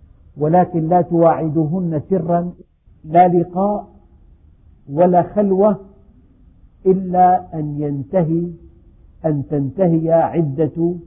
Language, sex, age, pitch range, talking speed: Indonesian, male, 50-69, 115-175 Hz, 75 wpm